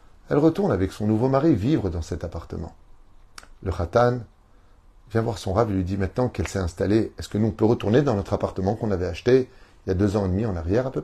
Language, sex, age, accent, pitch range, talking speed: French, male, 30-49, French, 90-110 Hz, 250 wpm